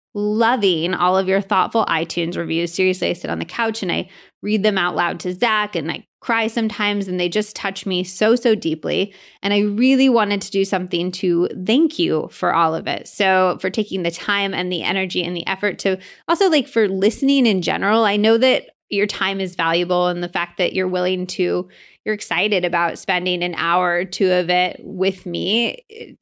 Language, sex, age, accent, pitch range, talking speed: English, female, 20-39, American, 180-225 Hz, 210 wpm